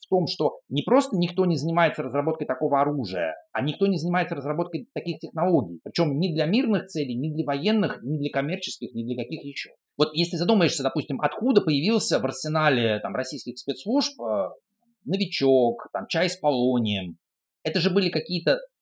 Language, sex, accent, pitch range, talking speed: Russian, male, native, 125-185 Hz, 165 wpm